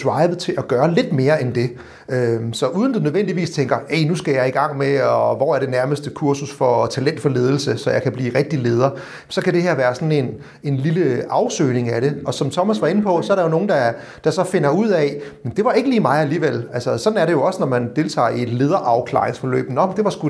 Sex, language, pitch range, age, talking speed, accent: male, Danish, 130-165 Hz, 30-49, 245 wpm, native